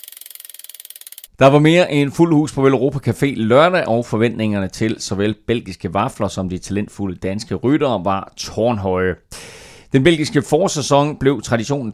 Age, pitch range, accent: 30-49, 100-140 Hz, native